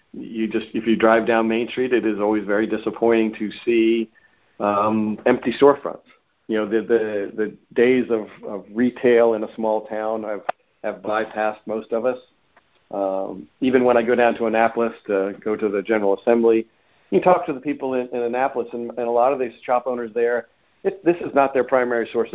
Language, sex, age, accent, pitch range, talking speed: English, male, 50-69, American, 105-125 Hz, 200 wpm